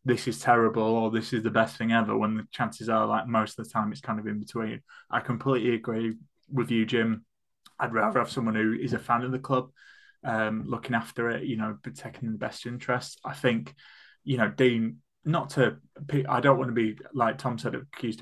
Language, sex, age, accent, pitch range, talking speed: English, male, 20-39, British, 115-130 Hz, 220 wpm